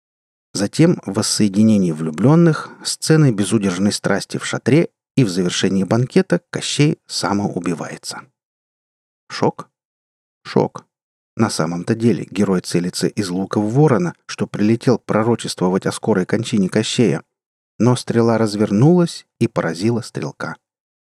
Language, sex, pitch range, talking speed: Russian, male, 100-135 Hz, 110 wpm